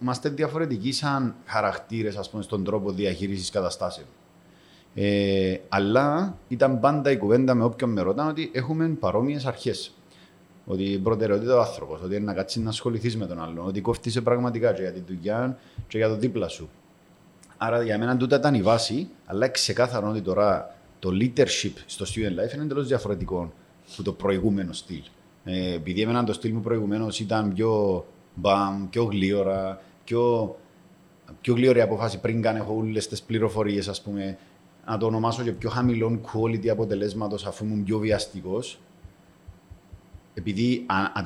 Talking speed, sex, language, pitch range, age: 155 wpm, male, Greek, 100-120 Hz, 30-49